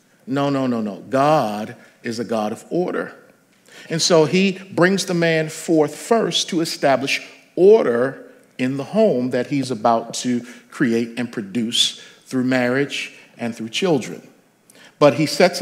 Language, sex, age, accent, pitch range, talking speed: English, male, 50-69, American, 130-175 Hz, 150 wpm